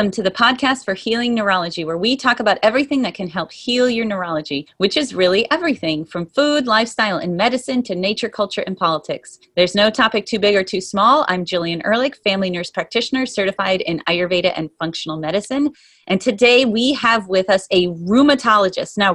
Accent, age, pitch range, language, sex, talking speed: American, 30-49, 180-235 Hz, English, female, 190 wpm